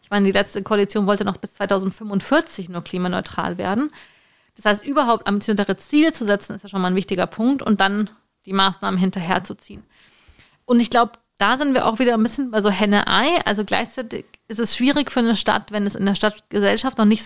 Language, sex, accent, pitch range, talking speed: German, female, German, 195-240 Hz, 205 wpm